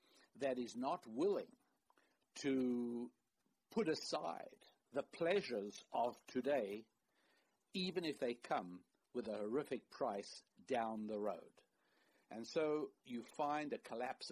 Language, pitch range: English, 115-150 Hz